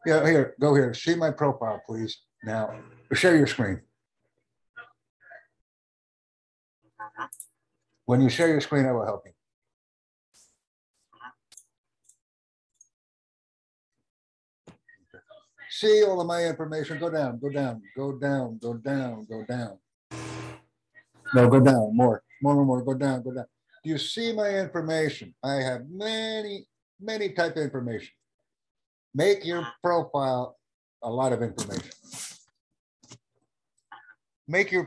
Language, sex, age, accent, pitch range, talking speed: English, male, 60-79, American, 120-160 Hz, 115 wpm